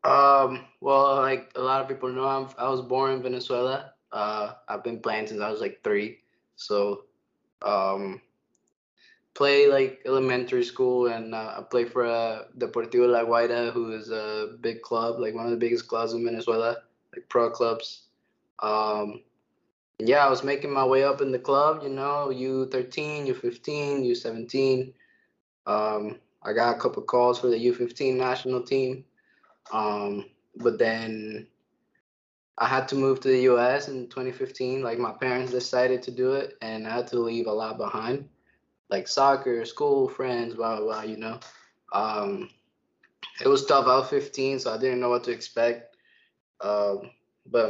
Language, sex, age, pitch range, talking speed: English, male, 20-39, 115-135 Hz, 165 wpm